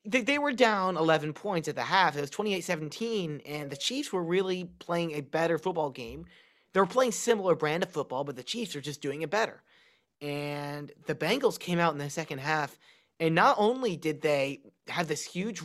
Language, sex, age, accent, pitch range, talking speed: English, male, 30-49, American, 155-210 Hz, 205 wpm